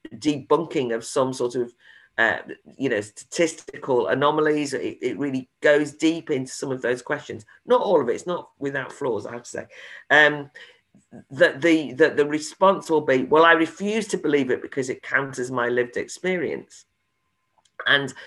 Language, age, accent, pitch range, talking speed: English, 50-69, British, 125-165 Hz, 175 wpm